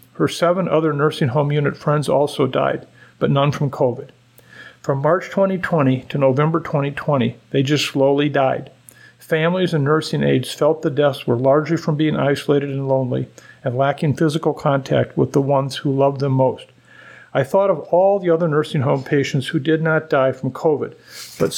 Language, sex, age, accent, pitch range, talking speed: English, male, 50-69, American, 135-160 Hz, 175 wpm